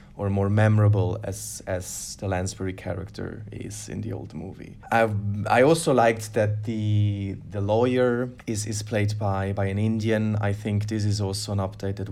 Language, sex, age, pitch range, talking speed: English, male, 20-39, 100-110 Hz, 175 wpm